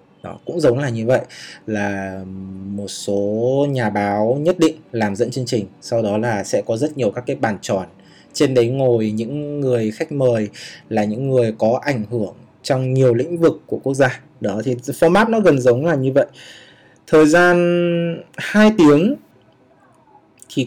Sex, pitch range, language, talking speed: male, 115-150 Hz, Vietnamese, 180 wpm